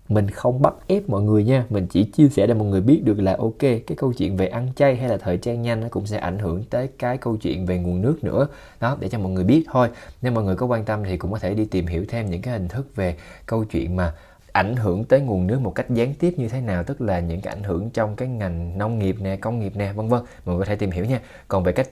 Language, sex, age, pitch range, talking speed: Vietnamese, male, 20-39, 90-120 Hz, 300 wpm